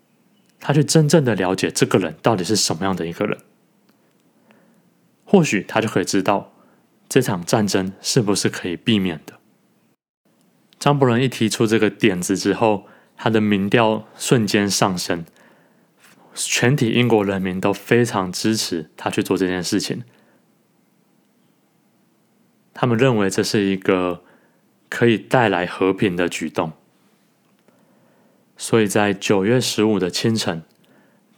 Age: 20-39